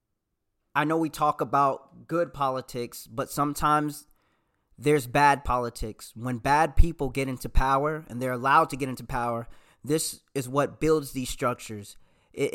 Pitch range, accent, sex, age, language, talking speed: 120-150 Hz, American, male, 20-39, English, 155 wpm